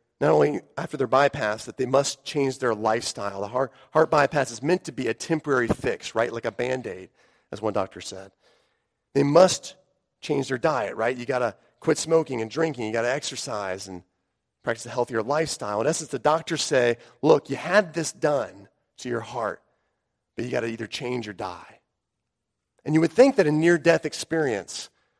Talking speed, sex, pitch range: 195 wpm, male, 115-155 Hz